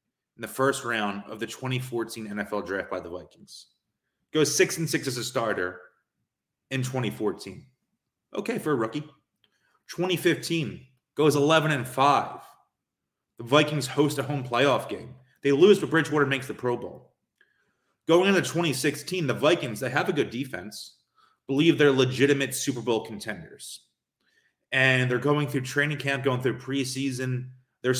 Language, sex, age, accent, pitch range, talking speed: English, male, 30-49, American, 120-150 Hz, 150 wpm